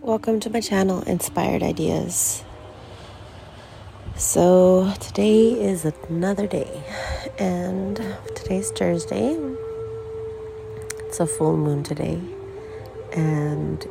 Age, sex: 30-49, female